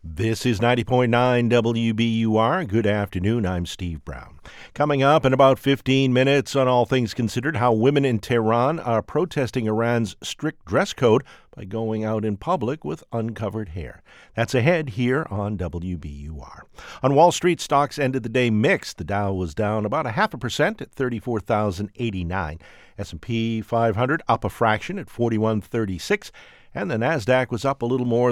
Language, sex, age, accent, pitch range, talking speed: English, male, 50-69, American, 105-130 Hz, 160 wpm